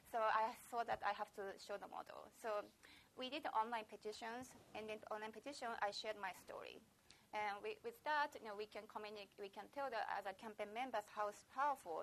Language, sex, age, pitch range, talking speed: English, female, 30-49, 200-240 Hz, 215 wpm